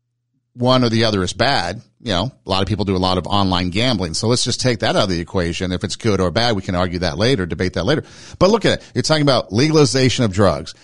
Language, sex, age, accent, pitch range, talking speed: English, male, 50-69, American, 100-125 Hz, 275 wpm